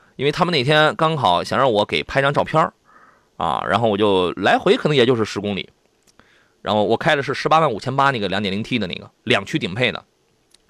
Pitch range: 115-165 Hz